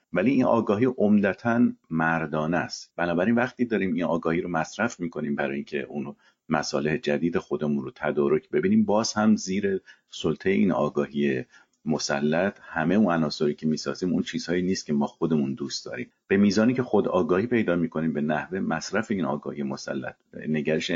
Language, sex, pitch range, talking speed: Persian, male, 75-115 Hz, 165 wpm